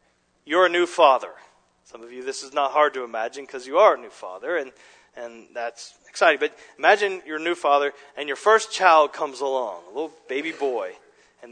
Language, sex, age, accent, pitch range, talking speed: English, male, 30-49, American, 140-175 Hz, 210 wpm